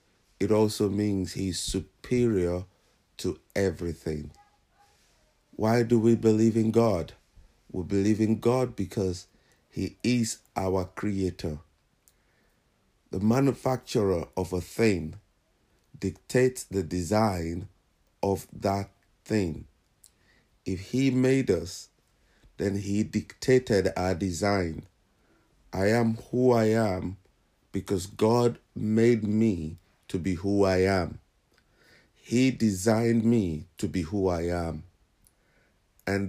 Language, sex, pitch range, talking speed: English, male, 90-115 Hz, 110 wpm